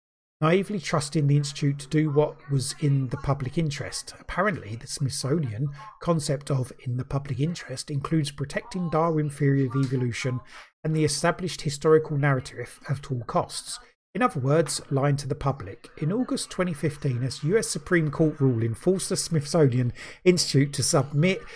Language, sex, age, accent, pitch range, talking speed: English, male, 30-49, British, 130-160 Hz, 155 wpm